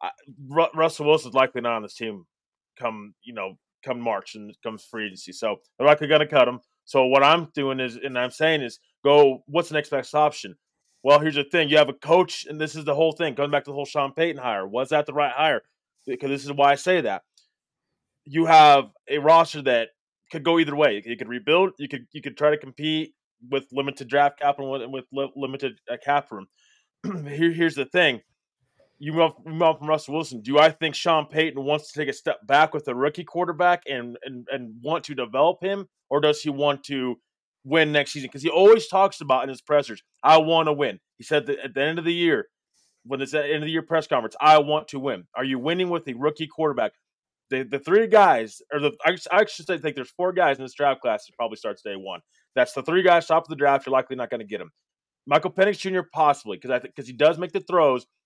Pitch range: 135-160 Hz